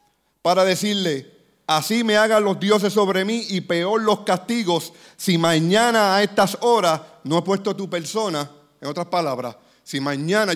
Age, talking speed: 40-59, 160 wpm